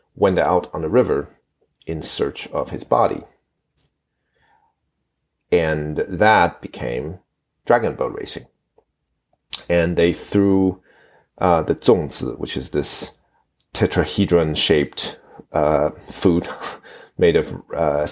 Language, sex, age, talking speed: English, male, 40-59, 105 wpm